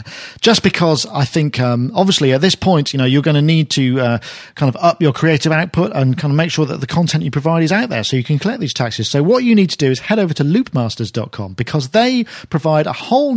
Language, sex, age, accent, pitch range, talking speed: English, male, 40-59, British, 135-185 Hz, 260 wpm